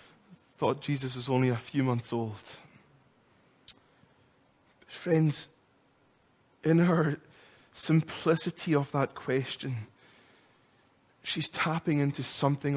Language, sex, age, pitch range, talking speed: English, male, 20-39, 120-135 Hz, 95 wpm